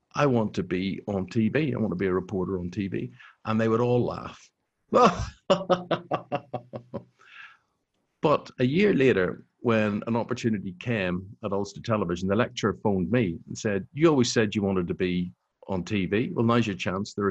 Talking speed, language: 175 wpm, English